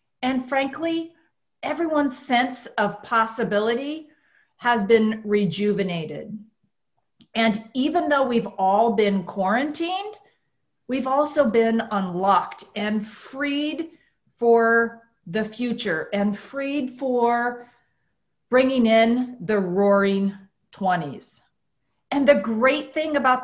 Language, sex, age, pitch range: English, female, 40-59, 195-255 Hz